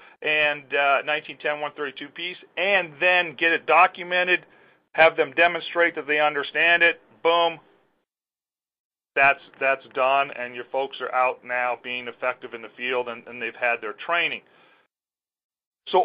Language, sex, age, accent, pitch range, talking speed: English, male, 40-59, American, 140-175 Hz, 140 wpm